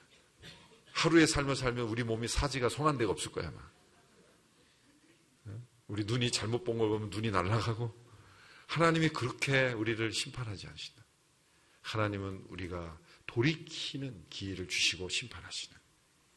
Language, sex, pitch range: Korean, male, 120-185 Hz